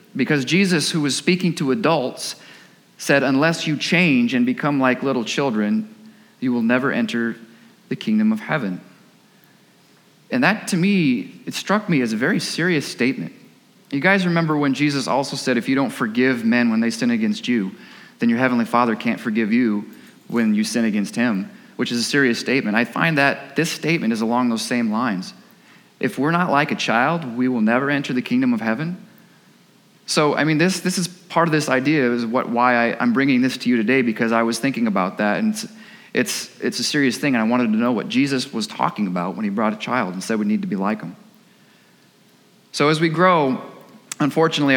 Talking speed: 210 wpm